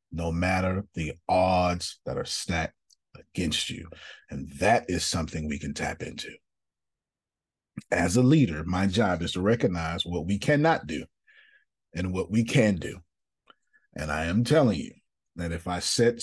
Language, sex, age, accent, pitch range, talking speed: English, male, 40-59, American, 90-120 Hz, 160 wpm